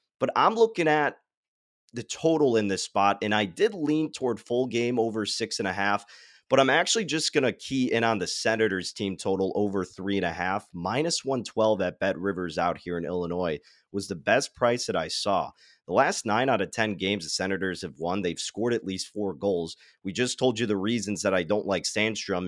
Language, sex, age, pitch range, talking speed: English, male, 30-49, 100-125 Hz, 220 wpm